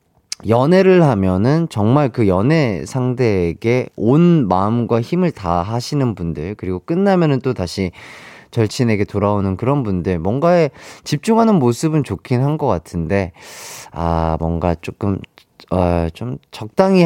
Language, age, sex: Korean, 30-49, male